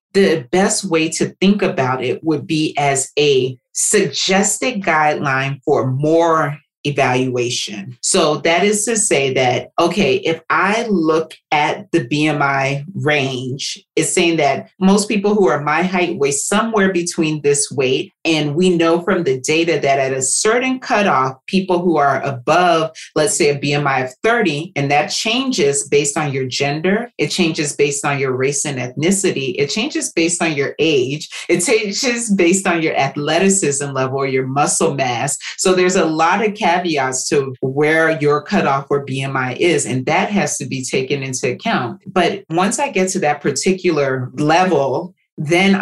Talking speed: 165 wpm